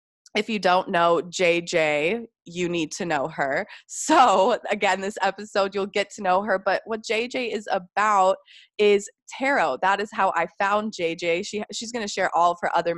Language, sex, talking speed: English, female, 190 wpm